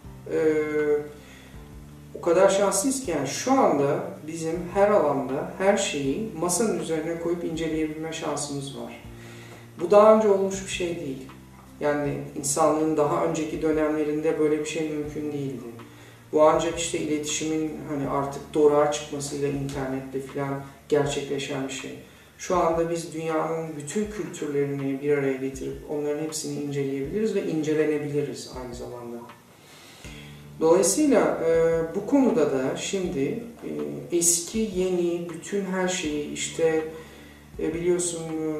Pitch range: 140-165 Hz